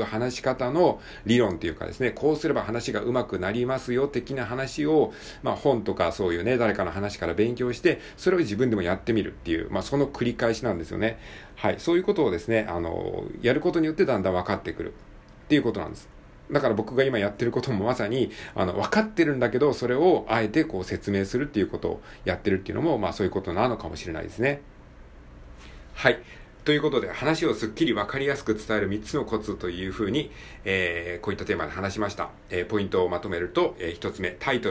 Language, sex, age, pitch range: Japanese, male, 40-59, 90-125 Hz